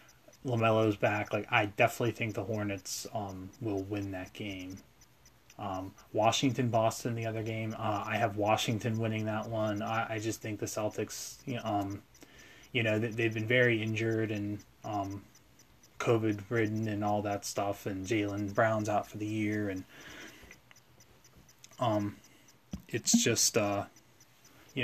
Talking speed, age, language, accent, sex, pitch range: 155 wpm, 20-39, English, American, male, 105-120 Hz